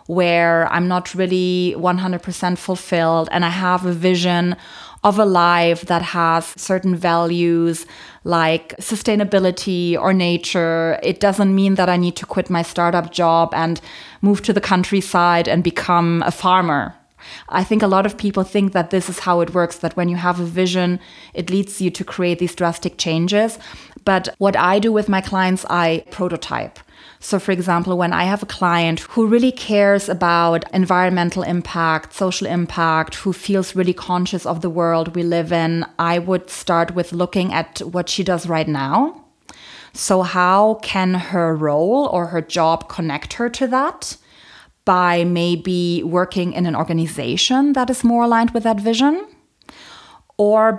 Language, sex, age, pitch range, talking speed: English, female, 30-49, 170-195 Hz, 165 wpm